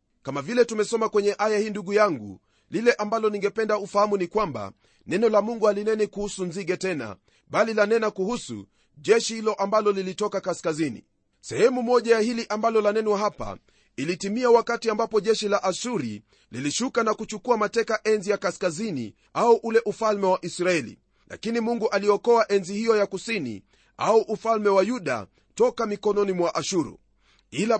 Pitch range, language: 180-220 Hz, Swahili